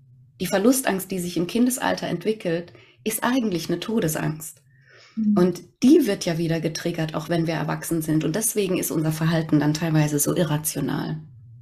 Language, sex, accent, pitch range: German, female, German, 160-200 Hz